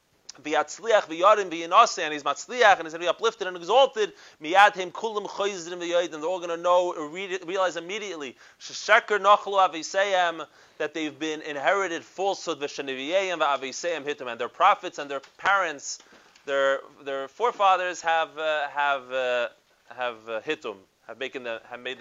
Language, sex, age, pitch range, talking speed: English, male, 30-49, 145-195 Hz, 170 wpm